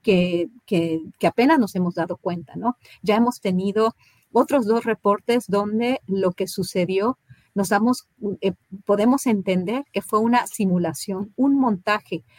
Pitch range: 185-225 Hz